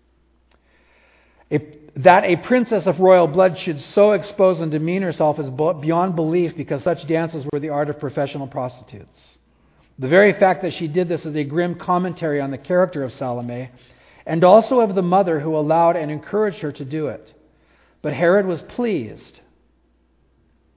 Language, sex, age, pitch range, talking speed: English, male, 50-69, 130-175 Hz, 165 wpm